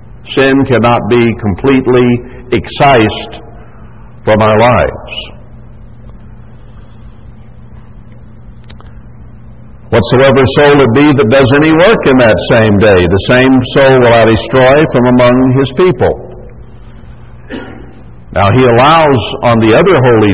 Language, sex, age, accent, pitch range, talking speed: English, male, 60-79, American, 110-125 Hz, 110 wpm